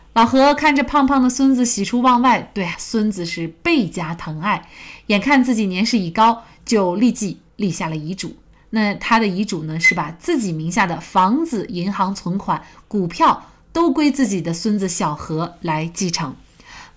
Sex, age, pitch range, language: female, 30-49, 175-250 Hz, Chinese